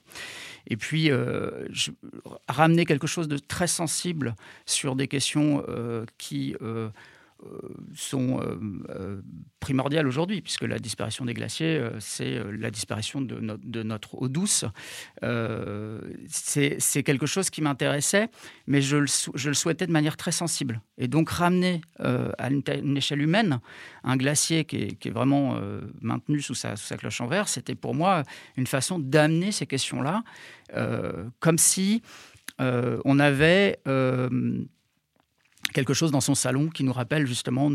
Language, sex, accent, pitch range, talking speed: French, male, French, 125-160 Hz, 165 wpm